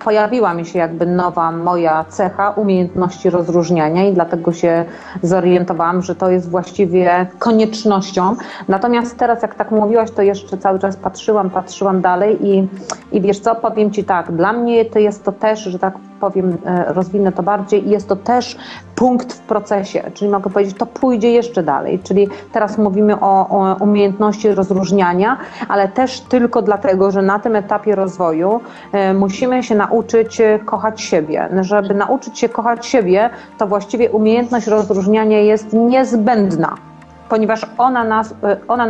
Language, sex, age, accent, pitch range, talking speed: Polish, female, 30-49, native, 190-225 Hz, 150 wpm